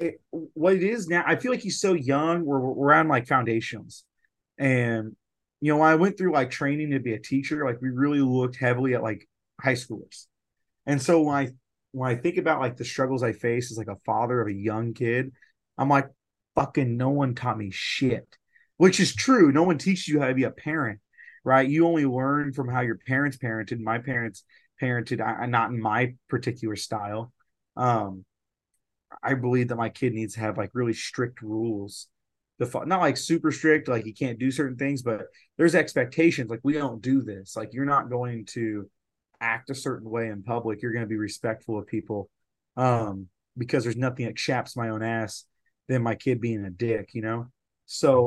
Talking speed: 200 wpm